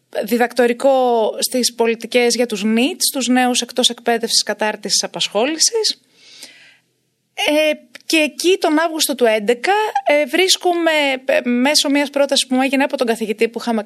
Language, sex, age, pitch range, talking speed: Greek, female, 20-39, 210-270 Hz, 145 wpm